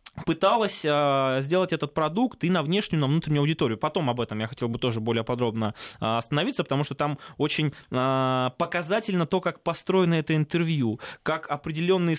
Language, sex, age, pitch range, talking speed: Russian, male, 20-39, 130-170 Hz, 160 wpm